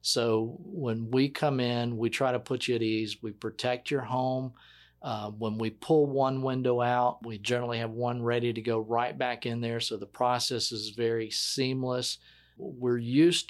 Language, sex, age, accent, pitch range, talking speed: English, male, 40-59, American, 115-130 Hz, 185 wpm